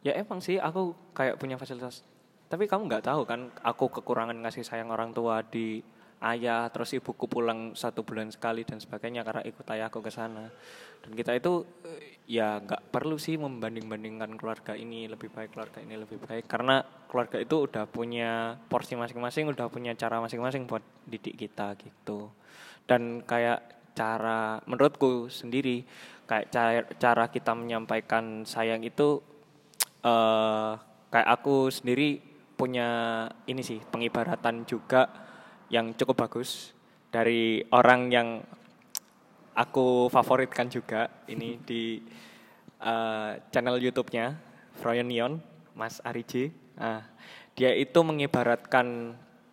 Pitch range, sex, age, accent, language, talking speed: 115-130 Hz, male, 10-29, native, Indonesian, 130 wpm